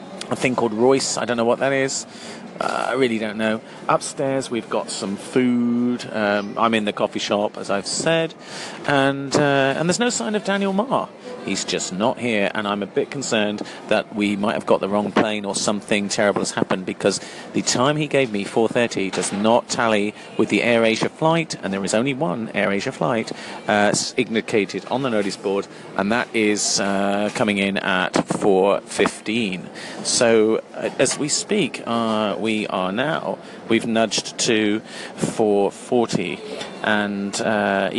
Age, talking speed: 40-59, 175 wpm